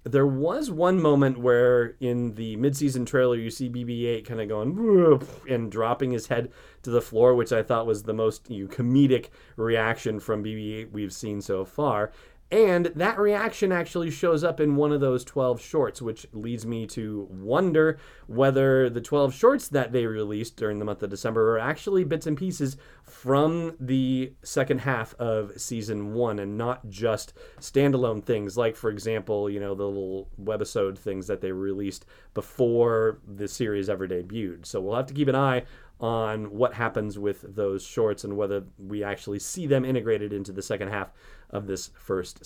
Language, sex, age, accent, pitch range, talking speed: English, male, 30-49, American, 110-140 Hz, 180 wpm